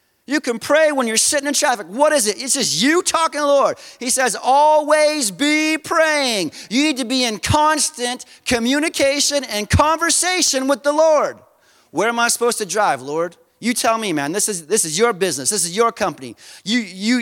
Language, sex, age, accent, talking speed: English, male, 30-49, American, 195 wpm